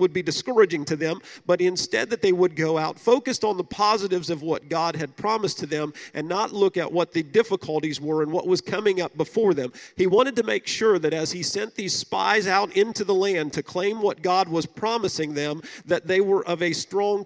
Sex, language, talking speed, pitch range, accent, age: male, English, 230 wpm, 165-215 Hz, American, 40-59